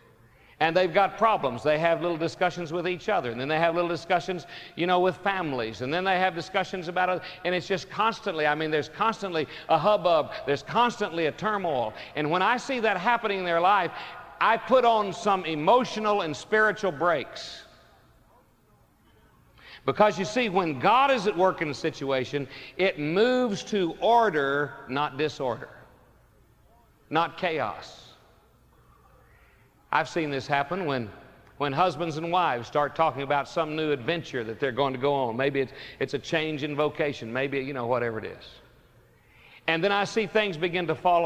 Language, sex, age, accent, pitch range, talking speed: English, male, 50-69, American, 155-195 Hz, 175 wpm